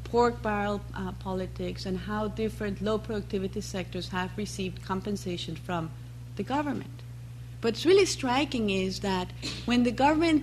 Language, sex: English, female